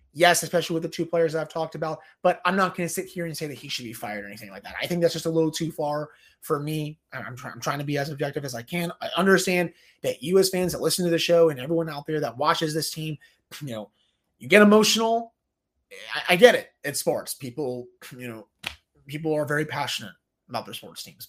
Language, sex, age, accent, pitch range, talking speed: English, male, 30-49, American, 140-180 Hz, 250 wpm